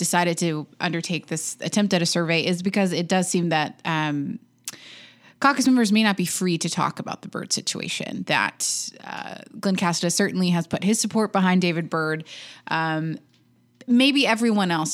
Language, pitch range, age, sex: English, 155-190 Hz, 20-39, female